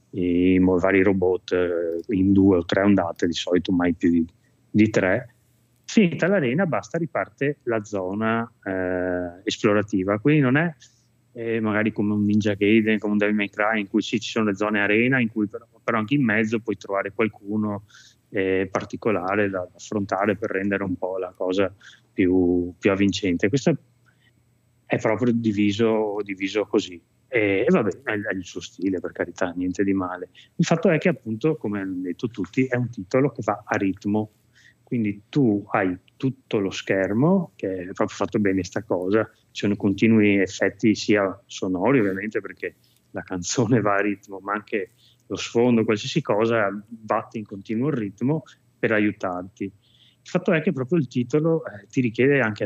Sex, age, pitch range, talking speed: male, 20-39, 95-120 Hz, 175 wpm